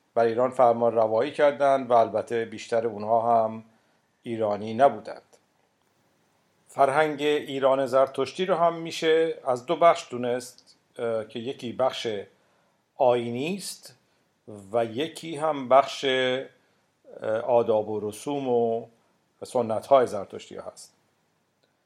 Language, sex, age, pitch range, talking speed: Persian, male, 50-69, 115-145 Hz, 100 wpm